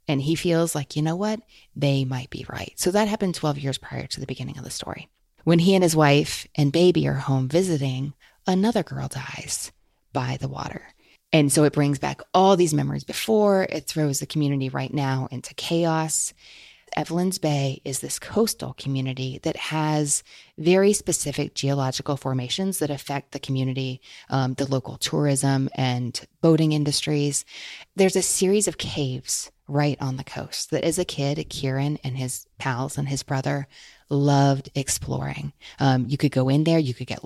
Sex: female